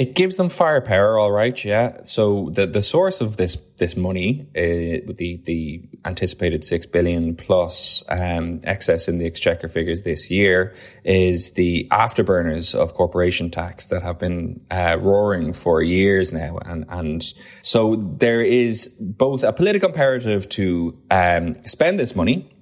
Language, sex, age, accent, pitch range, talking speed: English, male, 20-39, Irish, 85-105 Hz, 155 wpm